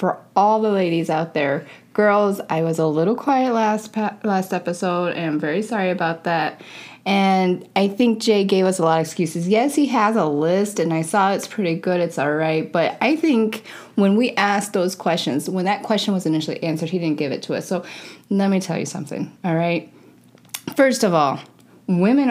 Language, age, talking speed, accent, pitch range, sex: English, 20-39, 205 wpm, American, 160-200 Hz, female